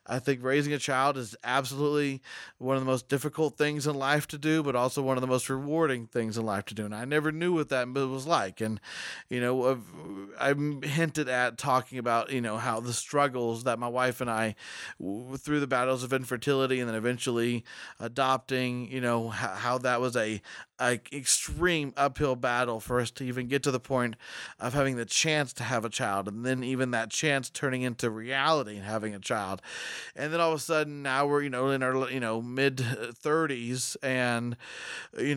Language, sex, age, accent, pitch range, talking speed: English, male, 30-49, American, 120-145 Hz, 205 wpm